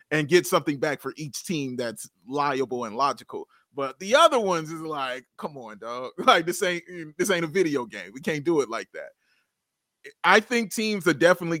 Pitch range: 135-180 Hz